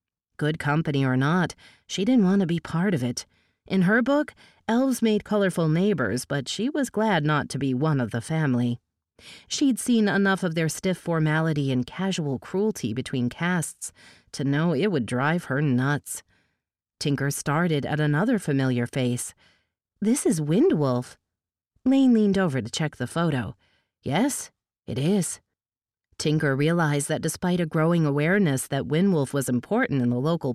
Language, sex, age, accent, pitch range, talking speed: English, female, 40-59, American, 130-200 Hz, 160 wpm